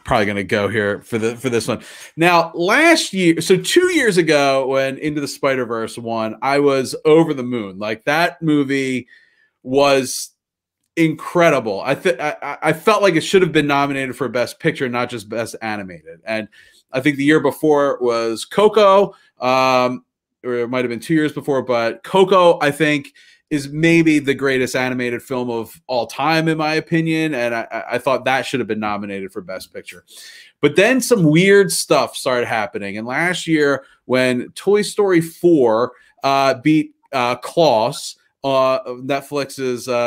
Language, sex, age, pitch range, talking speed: English, male, 30-49, 115-160 Hz, 175 wpm